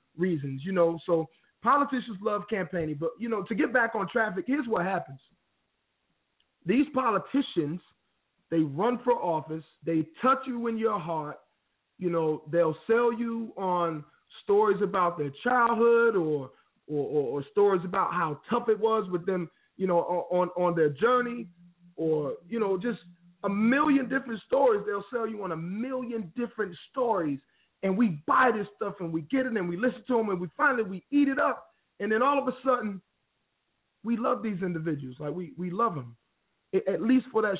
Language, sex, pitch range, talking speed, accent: English, male, 175-235 Hz, 180 wpm, American